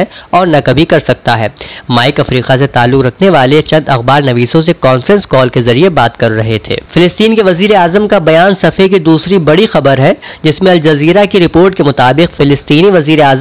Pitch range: 135-175 Hz